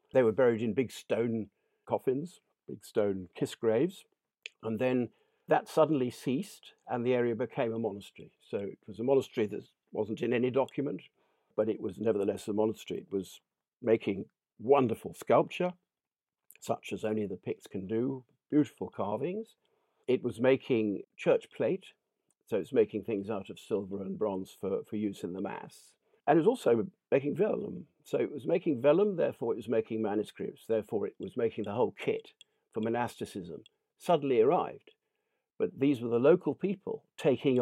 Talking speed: 170 wpm